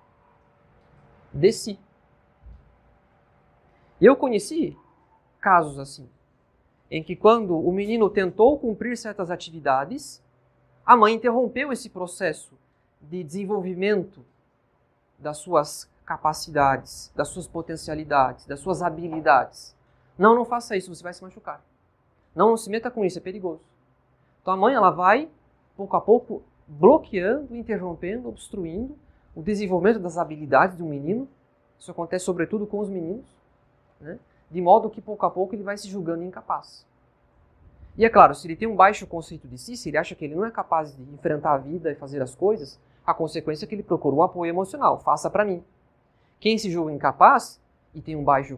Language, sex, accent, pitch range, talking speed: Portuguese, male, Brazilian, 155-210 Hz, 160 wpm